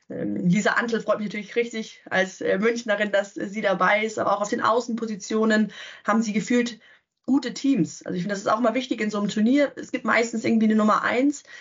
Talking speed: 210 wpm